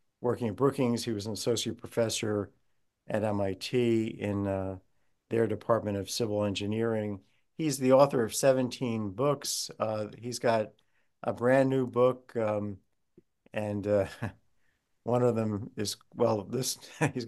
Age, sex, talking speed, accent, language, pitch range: 50-69, male, 140 wpm, American, English, 105-125 Hz